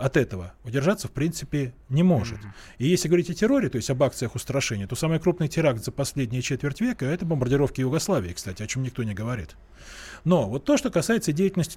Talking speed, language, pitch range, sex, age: 210 wpm, Russian, 125-180 Hz, male, 20-39